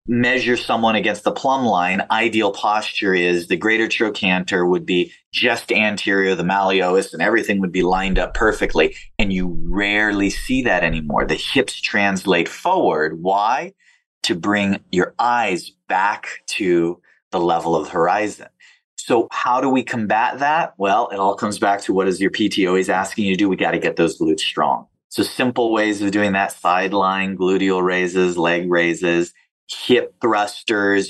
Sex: male